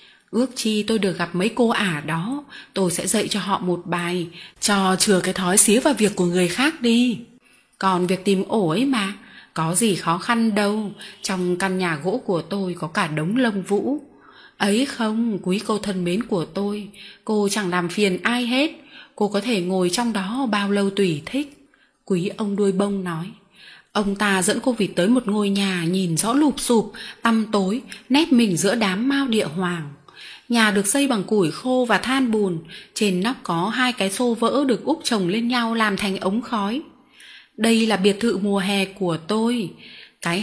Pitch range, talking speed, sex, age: 190-235 Hz, 200 wpm, female, 20-39